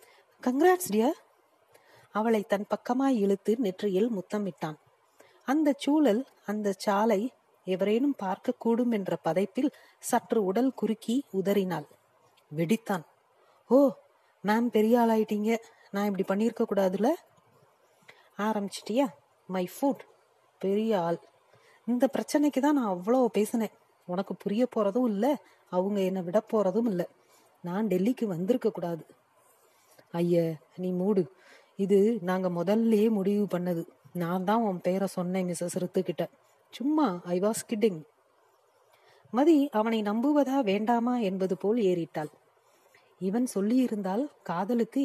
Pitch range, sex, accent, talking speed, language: 190-240 Hz, female, native, 100 wpm, Tamil